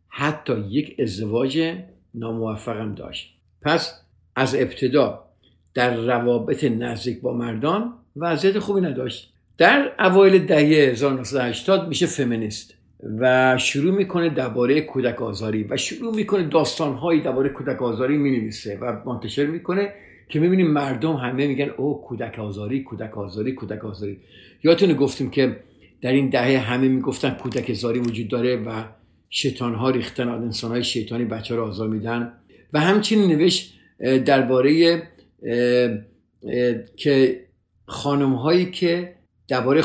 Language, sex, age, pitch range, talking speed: Persian, male, 50-69, 115-150 Hz, 130 wpm